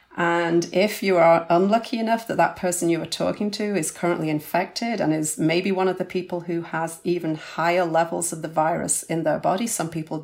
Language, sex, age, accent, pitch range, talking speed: English, female, 40-59, British, 165-220 Hz, 210 wpm